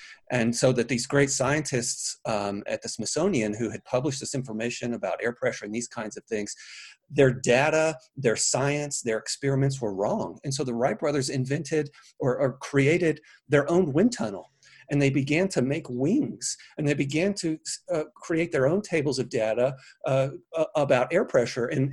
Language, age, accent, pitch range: English, 40-59, American, 120-155 Hz